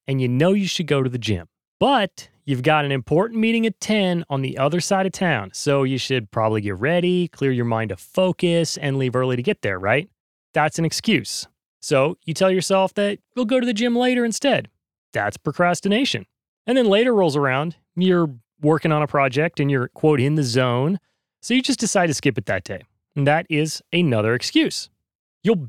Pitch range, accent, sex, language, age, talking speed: 140-190 Hz, American, male, English, 30-49, 210 wpm